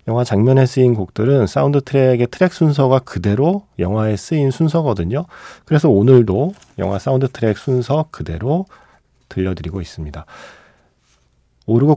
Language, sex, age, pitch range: Korean, male, 40-59, 95-140 Hz